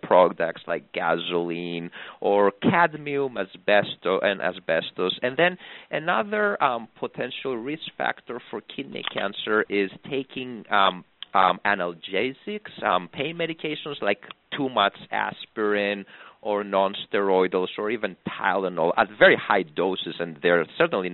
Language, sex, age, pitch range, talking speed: English, male, 40-59, 95-140 Hz, 120 wpm